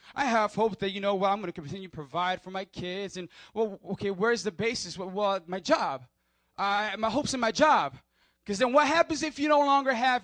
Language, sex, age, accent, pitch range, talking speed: English, male, 20-39, American, 150-245 Hz, 235 wpm